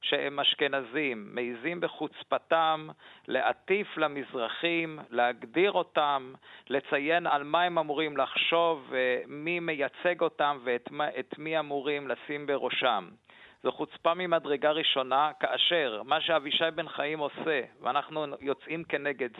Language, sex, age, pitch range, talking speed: Hebrew, male, 50-69, 135-165 Hz, 110 wpm